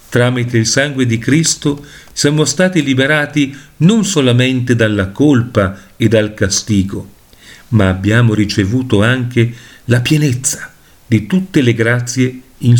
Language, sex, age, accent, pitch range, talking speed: Italian, male, 50-69, native, 115-150 Hz, 120 wpm